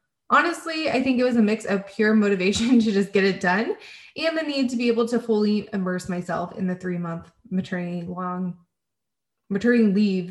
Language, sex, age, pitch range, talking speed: English, female, 20-39, 190-260 Hz, 185 wpm